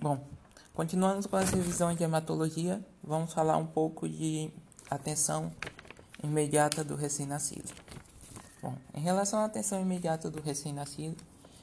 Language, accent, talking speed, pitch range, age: Portuguese, Brazilian, 125 wpm, 140-180 Hz, 20-39